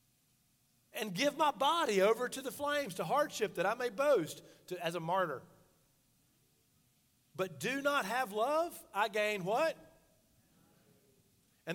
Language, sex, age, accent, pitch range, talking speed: English, male, 40-59, American, 155-230 Hz, 140 wpm